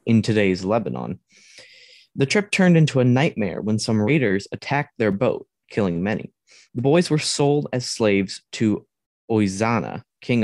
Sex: male